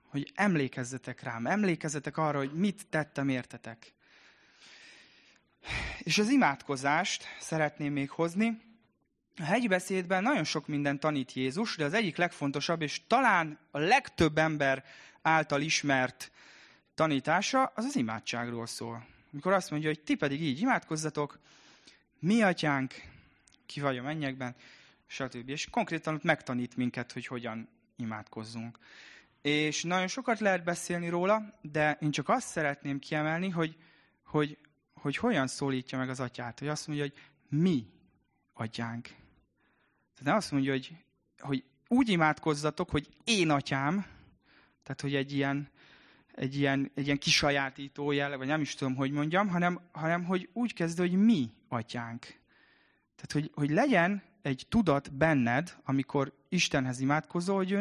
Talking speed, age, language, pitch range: 140 wpm, 20-39, Hungarian, 135-175 Hz